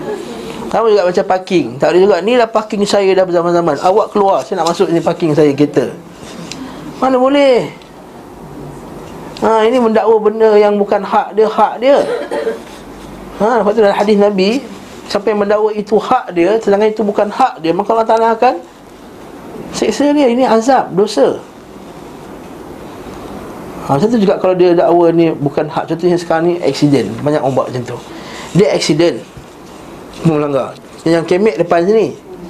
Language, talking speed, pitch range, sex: Malay, 150 wpm, 175-220 Hz, male